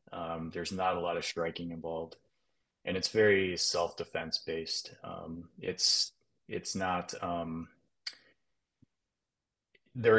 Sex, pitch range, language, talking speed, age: male, 85-95 Hz, English, 110 wpm, 20-39